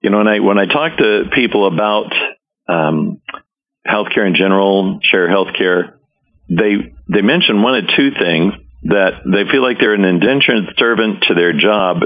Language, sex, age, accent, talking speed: English, male, 50-69, American, 165 wpm